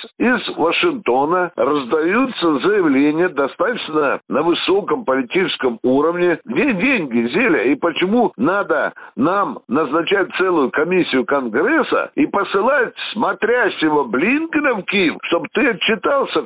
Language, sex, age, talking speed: Russian, male, 60-79, 110 wpm